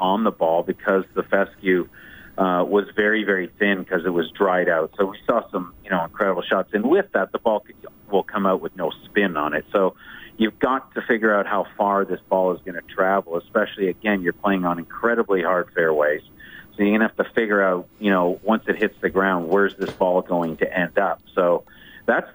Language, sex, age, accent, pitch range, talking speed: English, male, 40-59, American, 90-100 Hz, 225 wpm